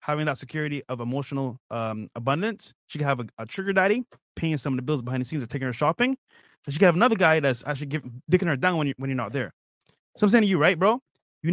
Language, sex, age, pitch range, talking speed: English, male, 20-39, 135-180 Hz, 270 wpm